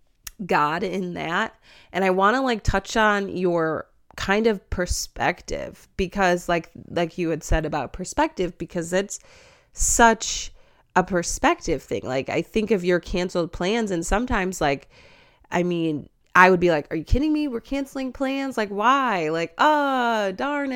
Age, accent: 20-39, American